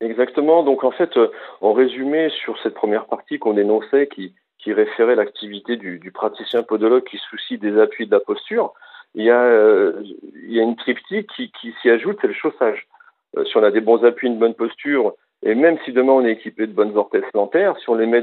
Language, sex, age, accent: French, male, 50-69, French